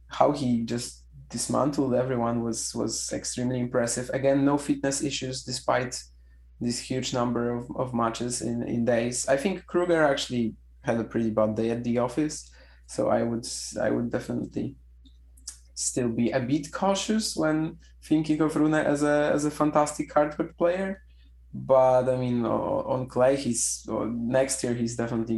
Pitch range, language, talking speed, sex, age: 110-135 Hz, English, 160 wpm, male, 20-39